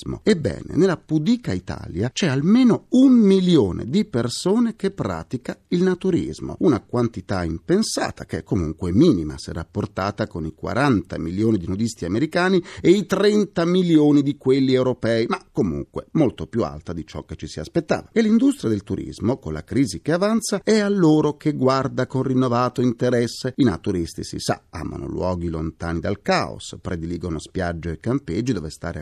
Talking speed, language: 165 wpm, Italian